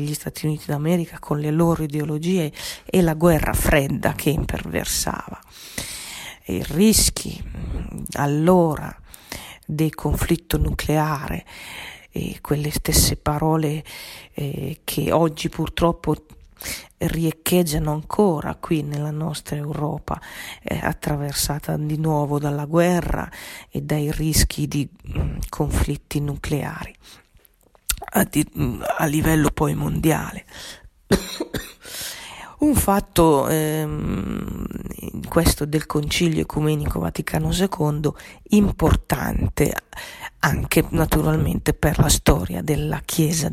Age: 40-59